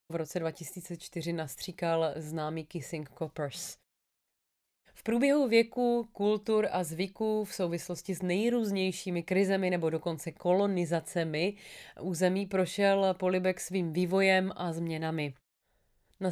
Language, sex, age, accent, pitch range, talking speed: Czech, female, 20-39, native, 165-195 Hz, 110 wpm